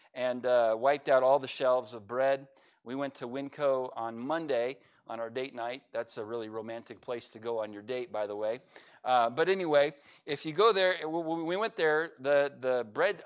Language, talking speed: English, 205 wpm